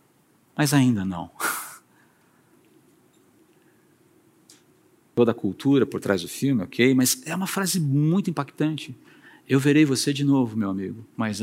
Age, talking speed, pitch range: 50-69, 130 wpm, 155-235 Hz